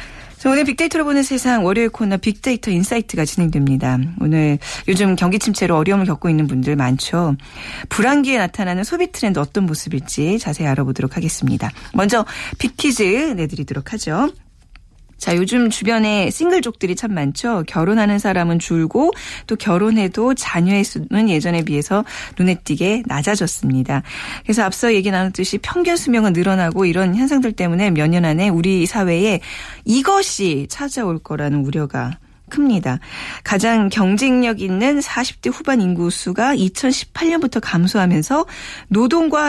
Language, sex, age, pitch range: Korean, female, 40-59, 165-245 Hz